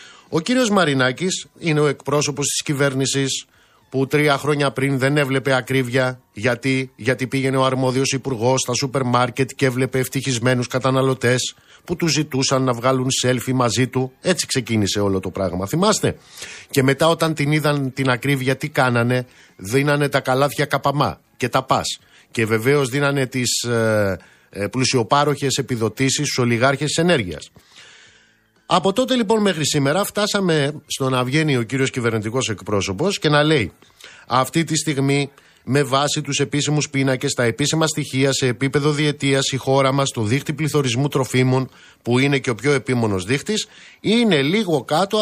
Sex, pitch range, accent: male, 125-150 Hz, native